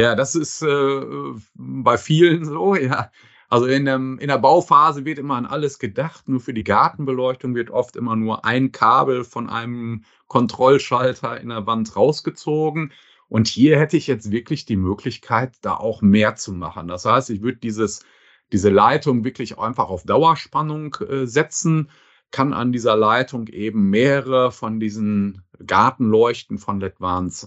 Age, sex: 40-59, male